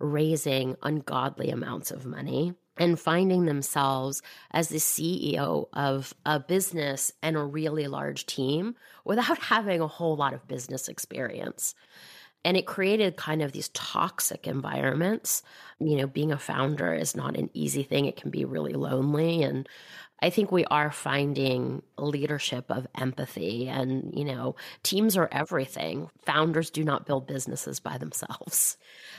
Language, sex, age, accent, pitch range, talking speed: English, female, 30-49, American, 140-175 Hz, 150 wpm